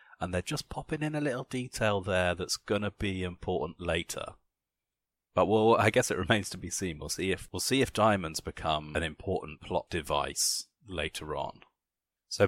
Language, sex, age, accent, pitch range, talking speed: English, male, 30-49, British, 85-110 Hz, 185 wpm